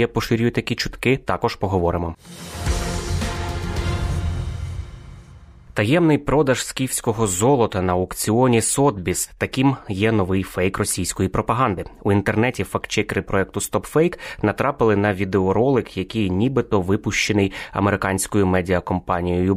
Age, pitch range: 20-39, 90-115 Hz